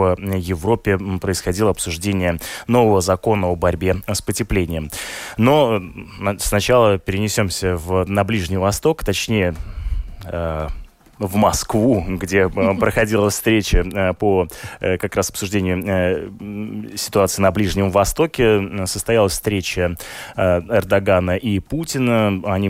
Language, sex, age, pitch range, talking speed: Russian, male, 20-39, 90-105 Hz, 100 wpm